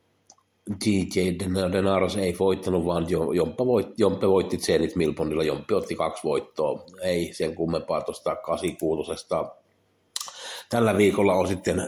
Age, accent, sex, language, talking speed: 60-79, native, male, Finnish, 110 wpm